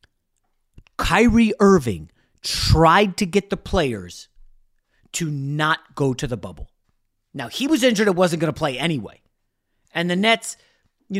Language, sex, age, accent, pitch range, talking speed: English, male, 40-59, American, 130-190 Hz, 145 wpm